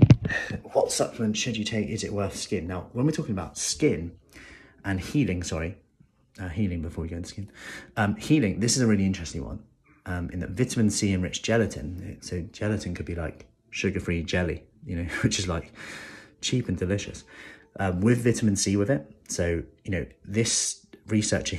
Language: English